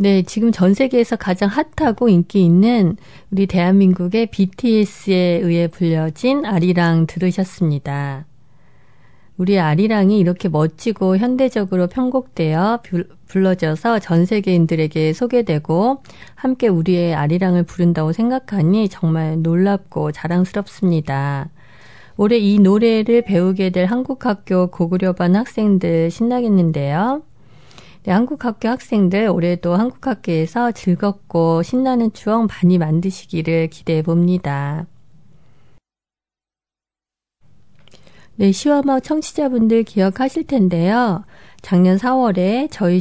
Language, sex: Korean, female